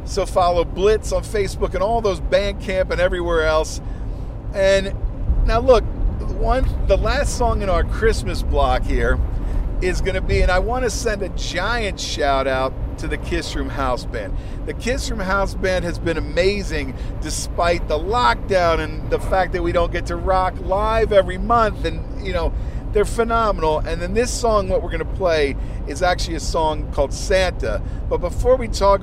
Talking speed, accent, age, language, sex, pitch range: 190 wpm, American, 50-69, English, male, 130-195 Hz